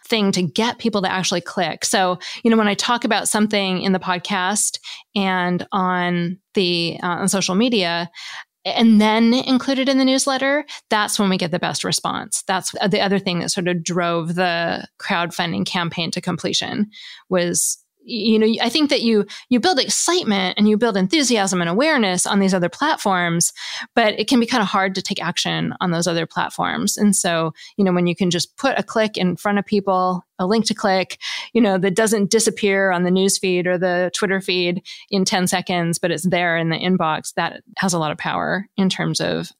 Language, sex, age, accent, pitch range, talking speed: English, female, 20-39, American, 180-220 Hz, 205 wpm